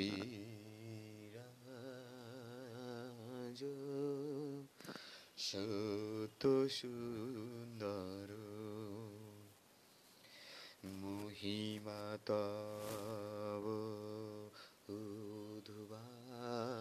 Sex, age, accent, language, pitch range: male, 30-49, native, Bengali, 115-185 Hz